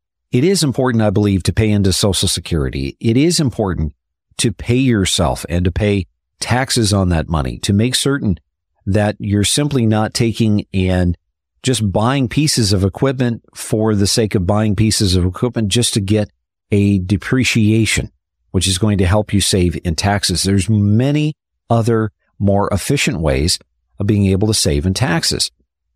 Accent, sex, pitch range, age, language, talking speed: American, male, 90-115 Hz, 50-69, English, 165 wpm